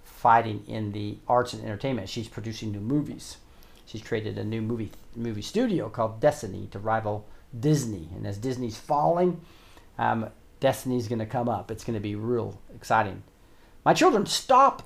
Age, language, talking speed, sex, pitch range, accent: 40-59, English, 160 wpm, male, 110-135 Hz, American